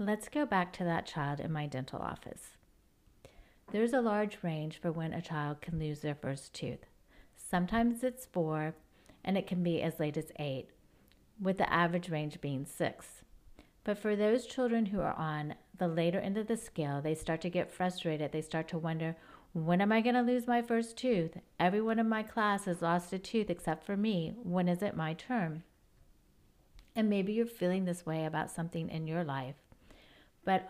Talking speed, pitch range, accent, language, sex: 190 wpm, 165-205 Hz, American, English, female